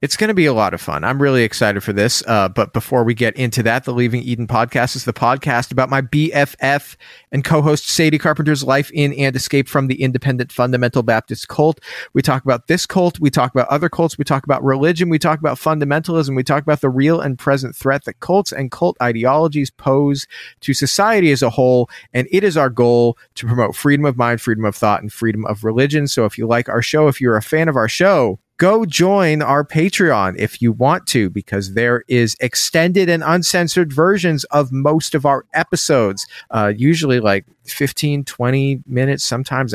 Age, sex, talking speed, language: 30-49, male, 210 wpm, English